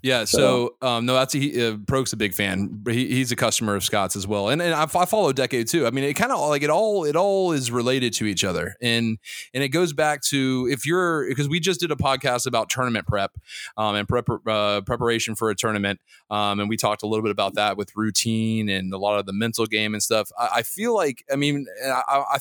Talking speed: 250 wpm